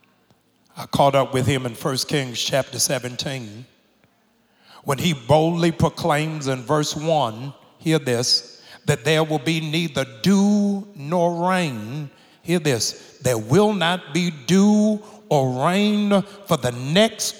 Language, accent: English, American